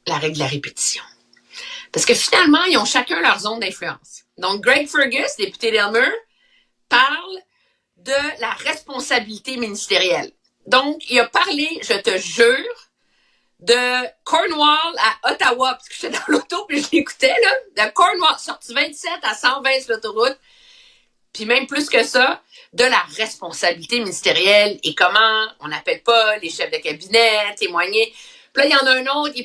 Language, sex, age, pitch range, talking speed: French, female, 50-69, 205-285 Hz, 165 wpm